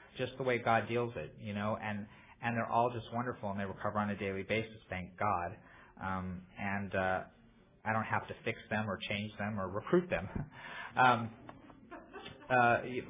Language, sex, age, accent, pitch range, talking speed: English, male, 30-49, American, 105-135 Hz, 185 wpm